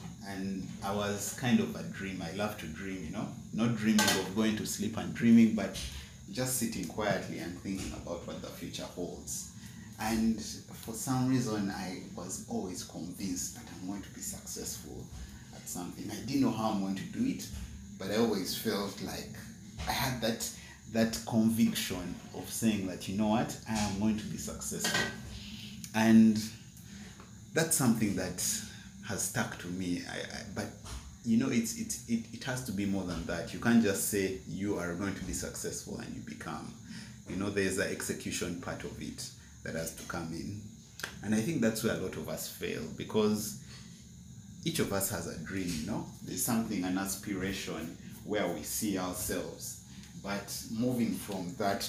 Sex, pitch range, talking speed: male, 95-110 Hz, 180 wpm